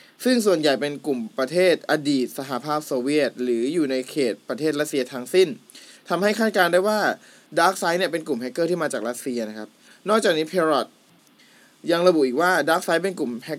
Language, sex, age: Thai, male, 20-39